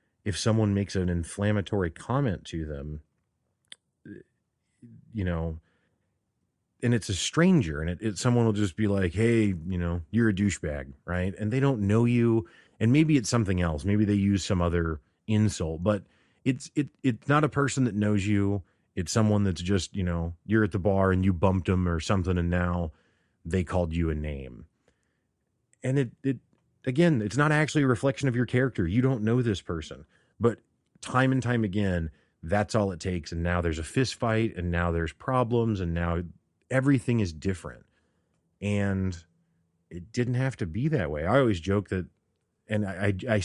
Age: 30-49